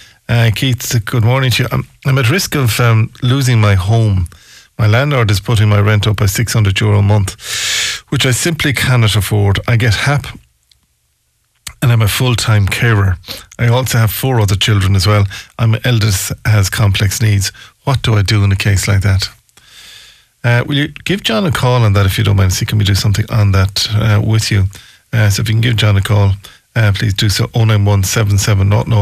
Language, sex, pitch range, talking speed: English, male, 100-120 Hz, 200 wpm